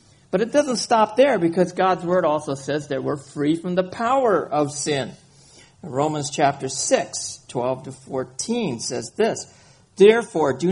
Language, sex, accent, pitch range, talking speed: English, male, American, 150-230 Hz, 155 wpm